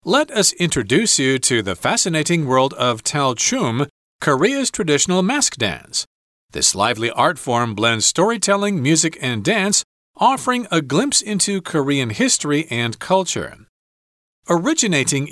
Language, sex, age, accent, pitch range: Chinese, male, 40-59, American, 125-200 Hz